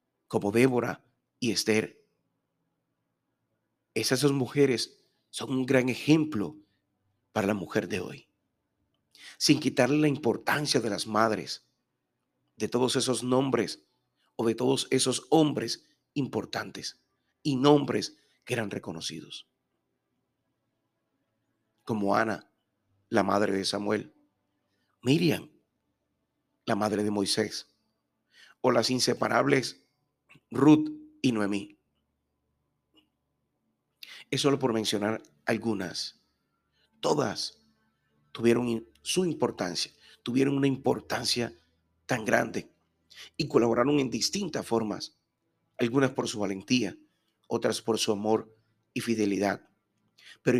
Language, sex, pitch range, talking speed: Spanish, male, 100-130 Hz, 100 wpm